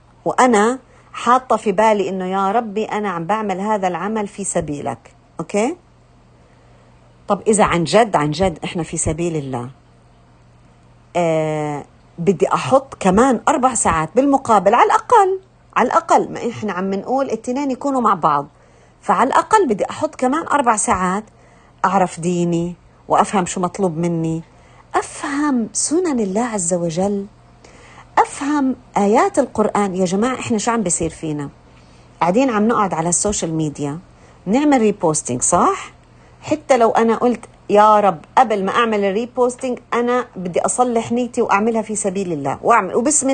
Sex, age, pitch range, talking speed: female, 50-69, 175-245 Hz, 140 wpm